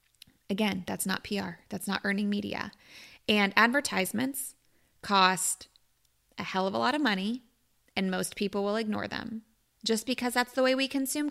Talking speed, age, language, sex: 165 wpm, 20-39, English, female